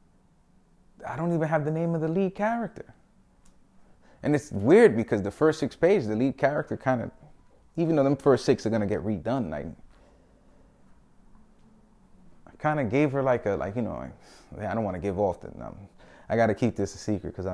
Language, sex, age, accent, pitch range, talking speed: English, male, 30-49, American, 95-120 Hz, 210 wpm